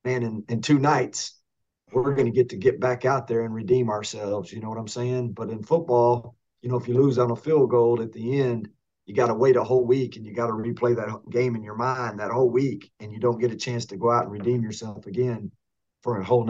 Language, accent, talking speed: English, American, 265 wpm